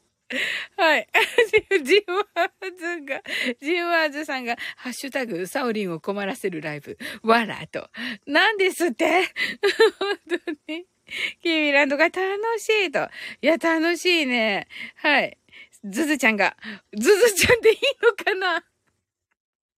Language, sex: Japanese, female